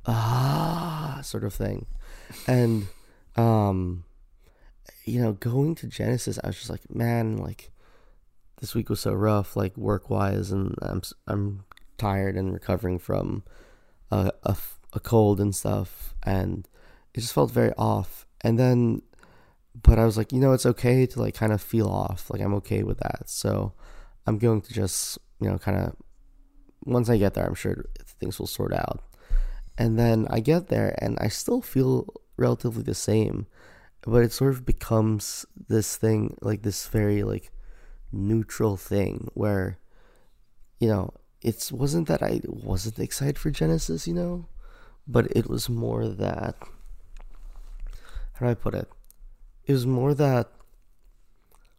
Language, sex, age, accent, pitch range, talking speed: English, male, 20-39, American, 100-125 Hz, 160 wpm